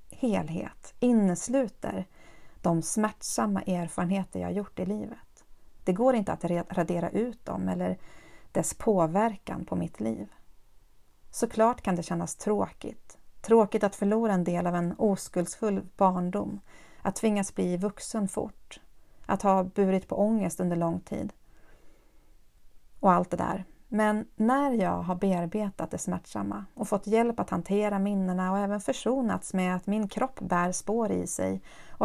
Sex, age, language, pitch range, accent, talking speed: female, 40-59, Swedish, 180-220 Hz, native, 145 wpm